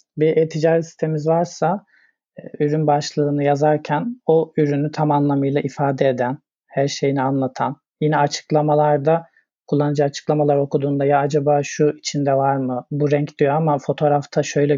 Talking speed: 135 wpm